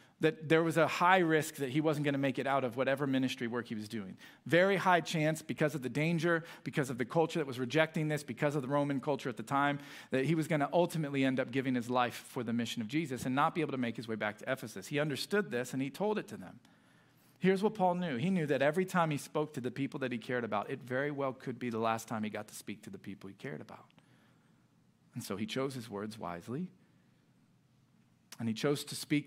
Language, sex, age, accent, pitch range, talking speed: English, male, 40-59, American, 125-155 Hz, 260 wpm